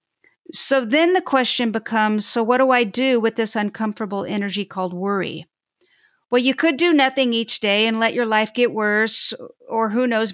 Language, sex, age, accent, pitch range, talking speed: English, female, 50-69, American, 215-275 Hz, 185 wpm